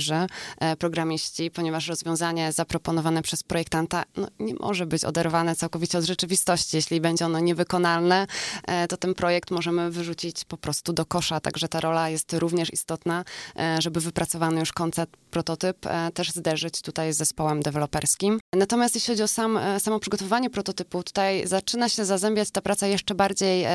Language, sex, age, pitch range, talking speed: Polish, female, 20-39, 160-185 Hz, 150 wpm